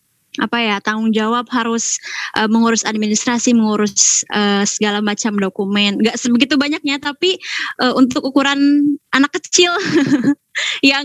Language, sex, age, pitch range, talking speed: English, female, 20-39, 215-265 Hz, 125 wpm